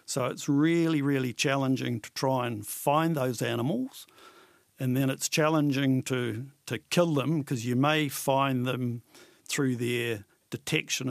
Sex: male